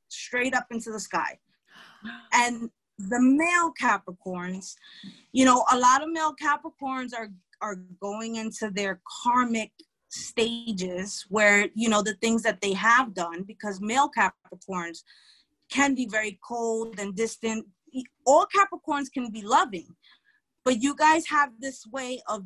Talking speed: 140 wpm